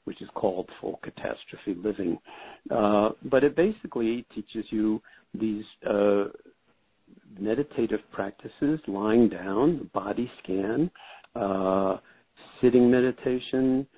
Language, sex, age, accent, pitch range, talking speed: English, male, 60-79, American, 105-130 Hz, 100 wpm